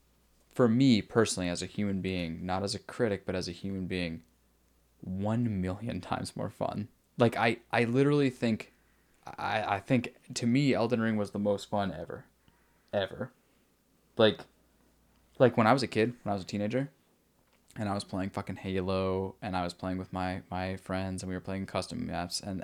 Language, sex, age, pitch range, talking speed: English, male, 10-29, 90-110 Hz, 190 wpm